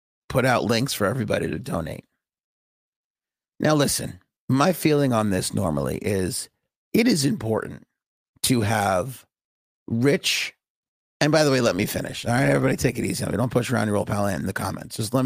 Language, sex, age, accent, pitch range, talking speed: English, male, 30-49, American, 110-140 Hz, 175 wpm